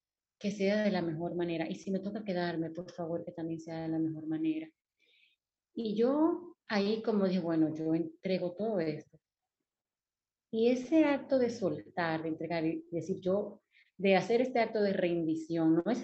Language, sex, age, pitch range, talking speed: Spanish, female, 30-49, 170-225 Hz, 185 wpm